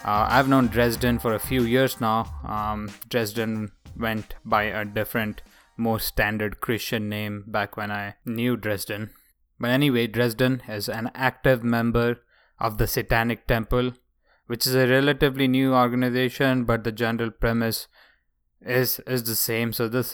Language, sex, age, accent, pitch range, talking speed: English, male, 20-39, Indian, 110-130 Hz, 150 wpm